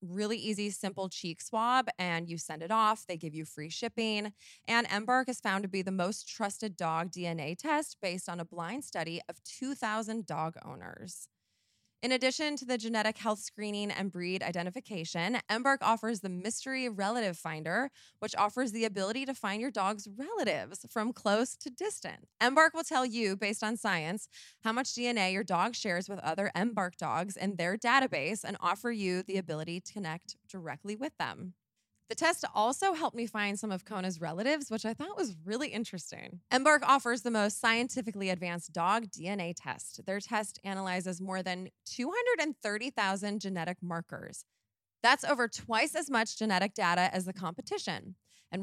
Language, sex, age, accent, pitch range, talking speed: English, female, 20-39, American, 185-245 Hz, 170 wpm